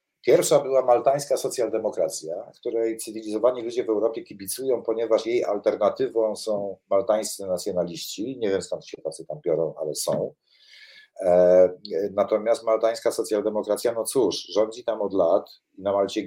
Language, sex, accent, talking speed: Polish, male, native, 140 wpm